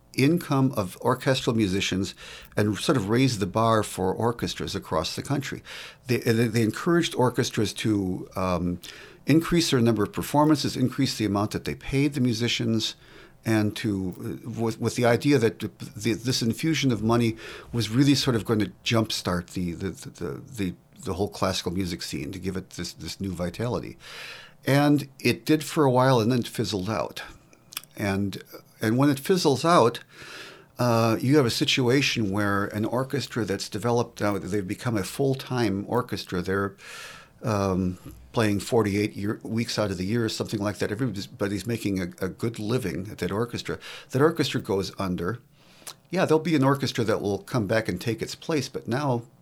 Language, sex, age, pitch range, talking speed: English, male, 50-69, 100-130 Hz, 175 wpm